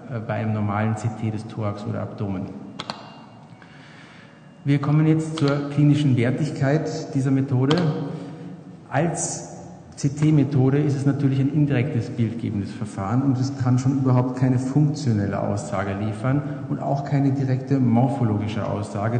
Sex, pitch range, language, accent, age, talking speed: male, 120-145 Hz, German, German, 50-69, 125 wpm